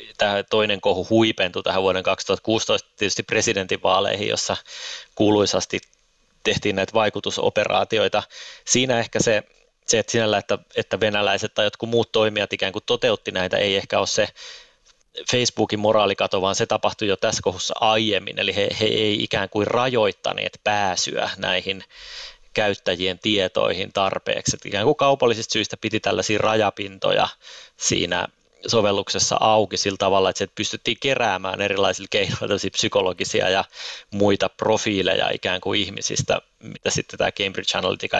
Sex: male